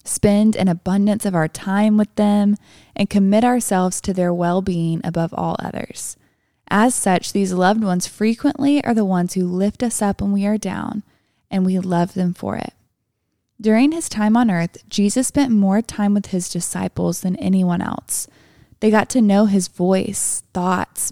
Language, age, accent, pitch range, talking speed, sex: English, 20-39, American, 185-225 Hz, 180 wpm, female